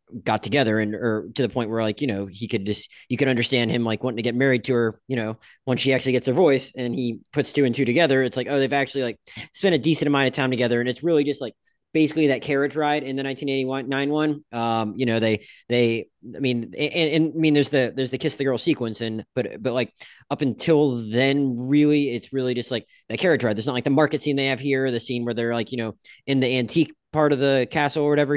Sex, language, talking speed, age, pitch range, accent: male, English, 265 wpm, 20-39, 125-155 Hz, American